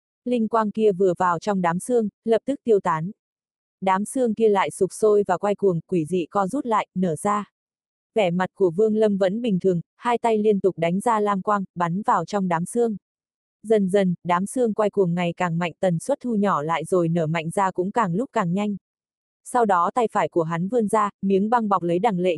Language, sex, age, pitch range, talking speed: Vietnamese, female, 20-39, 175-220 Hz, 230 wpm